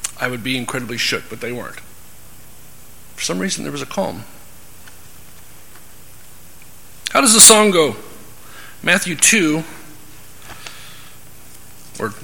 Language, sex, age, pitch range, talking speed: English, male, 50-69, 125-170 Hz, 115 wpm